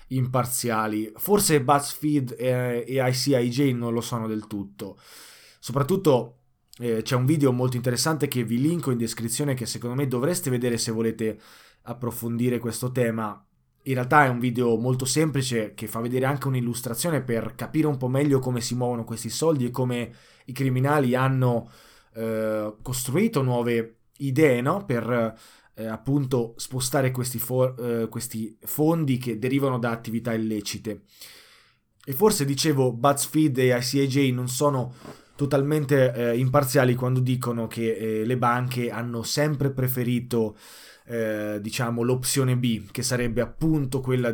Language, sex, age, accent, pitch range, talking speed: Italian, male, 20-39, native, 115-135 Hz, 145 wpm